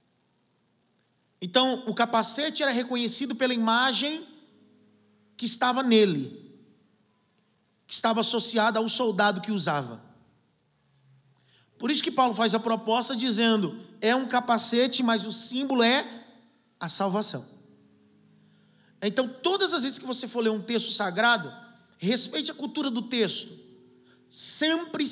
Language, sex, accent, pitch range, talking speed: Portuguese, male, Brazilian, 215-270 Hz, 120 wpm